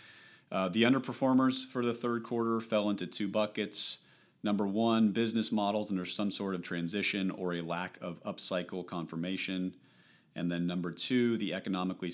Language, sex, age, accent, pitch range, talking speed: English, male, 40-59, American, 85-105 Hz, 160 wpm